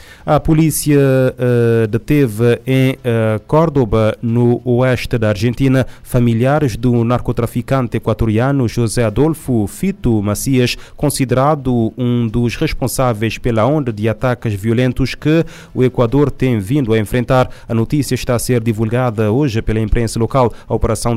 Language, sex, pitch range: Portuguese, male, 115-130 Hz